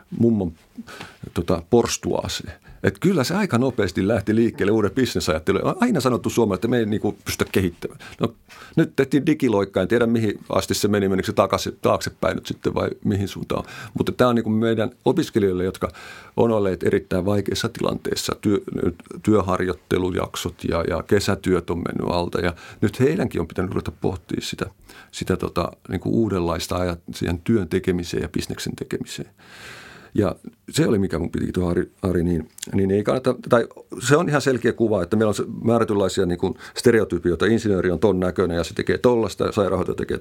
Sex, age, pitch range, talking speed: male, 50-69, 90-115 Hz, 170 wpm